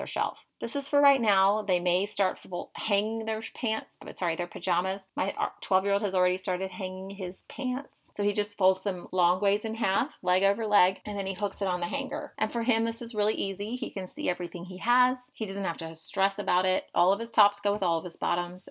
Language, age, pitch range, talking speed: English, 30-49, 180-220 Hz, 235 wpm